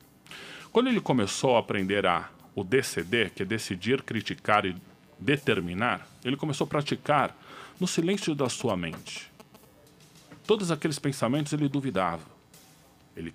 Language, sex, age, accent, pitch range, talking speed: Portuguese, male, 40-59, Brazilian, 105-150 Hz, 130 wpm